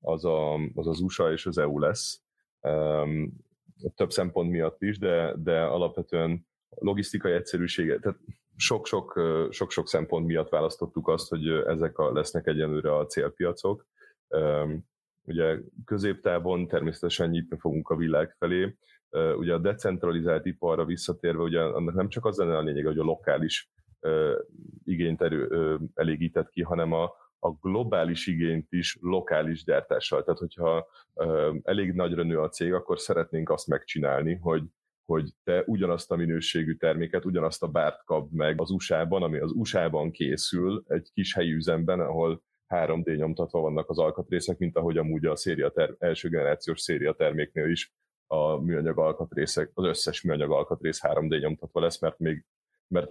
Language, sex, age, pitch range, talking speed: Hungarian, male, 30-49, 80-95 Hz, 150 wpm